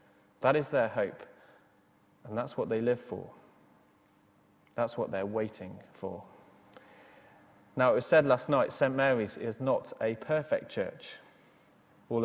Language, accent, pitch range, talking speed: English, British, 115-150 Hz, 140 wpm